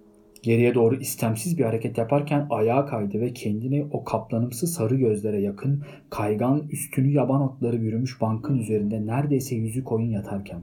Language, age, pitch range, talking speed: Turkish, 40-59, 95-125 Hz, 145 wpm